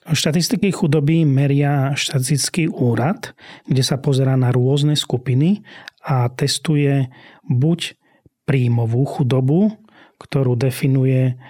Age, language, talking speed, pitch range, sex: 30-49, Slovak, 95 wpm, 125-150 Hz, male